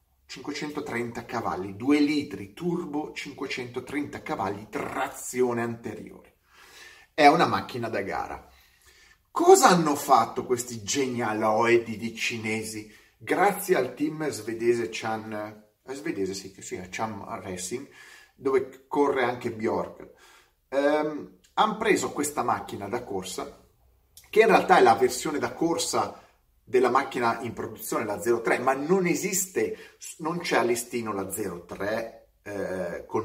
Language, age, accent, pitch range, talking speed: Italian, 30-49, native, 115-180 Hz, 110 wpm